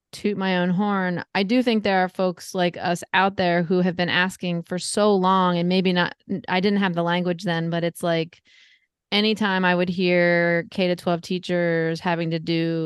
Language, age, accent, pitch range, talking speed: English, 30-49, American, 165-200 Hz, 205 wpm